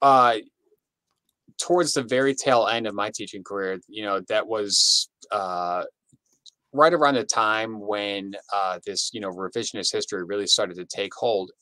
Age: 30-49